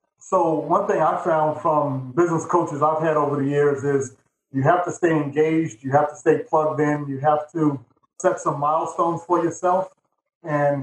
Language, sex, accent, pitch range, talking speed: English, male, American, 140-160 Hz, 190 wpm